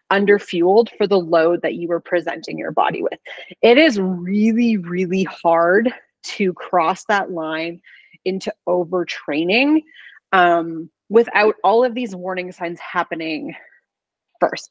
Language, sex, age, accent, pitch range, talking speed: English, female, 30-49, American, 175-220 Hz, 130 wpm